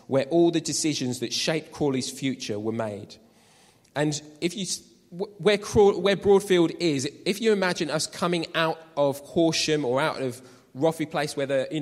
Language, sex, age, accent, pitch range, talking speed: English, male, 20-39, British, 130-165 Hz, 175 wpm